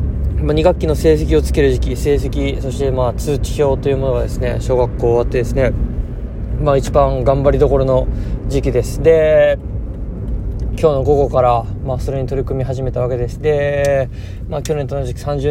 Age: 20-39